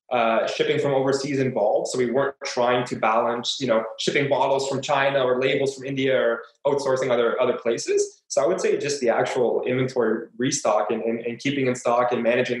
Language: English